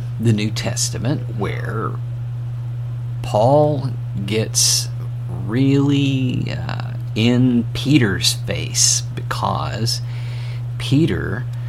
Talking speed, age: 65 wpm, 50-69